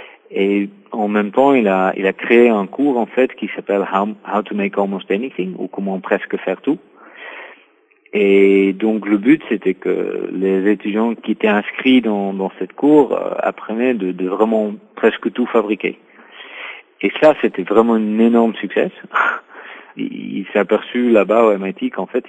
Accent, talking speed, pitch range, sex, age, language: French, 180 wpm, 95-110 Hz, male, 50-69, French